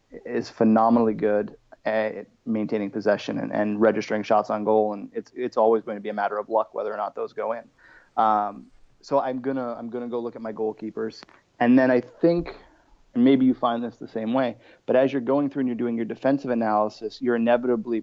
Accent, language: American, English